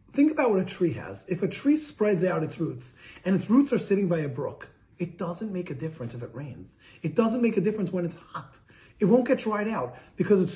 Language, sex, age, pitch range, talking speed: English, male, 30-49, 155-210 Hz, 250 wpm